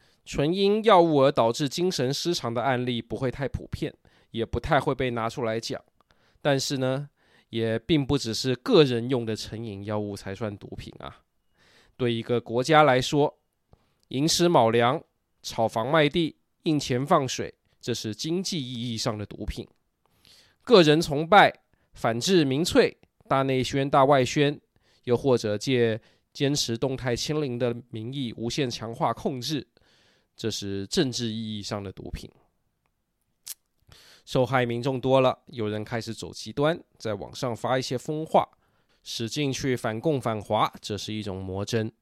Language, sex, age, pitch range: Chinese, male, 20-39, 110-135 Hz